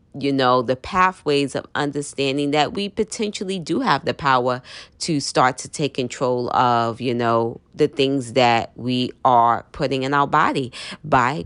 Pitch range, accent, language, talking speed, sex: 120-155 Hz, American, English, 160 wpm, female